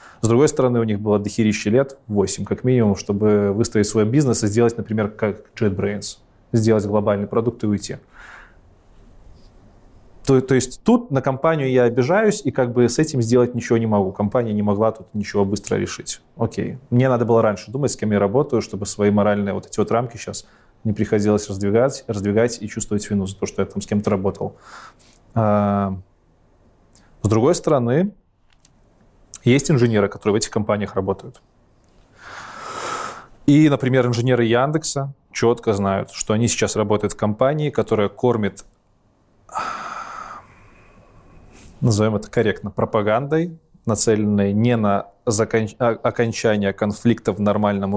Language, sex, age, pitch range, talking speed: Russian, male, 20-39, 105-125 Hz, 145 wpm